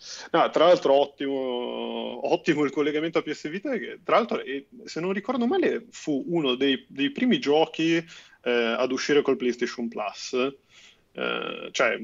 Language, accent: Italian, native